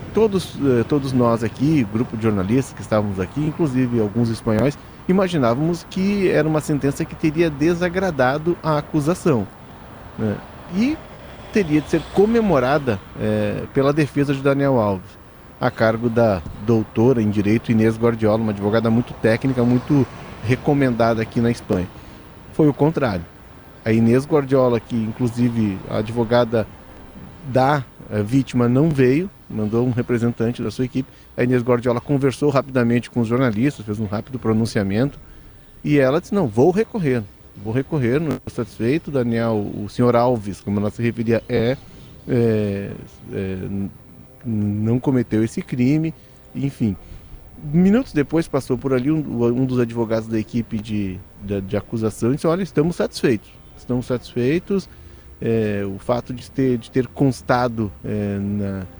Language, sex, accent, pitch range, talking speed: Portuguese, male, Brazilian, 110-140 Hz, 145 wpm